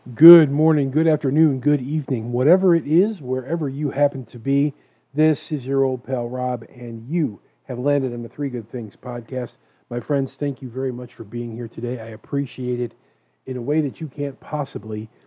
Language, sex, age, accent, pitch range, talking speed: English, male, 40-59, American, 120-145 Hz, 195 wpm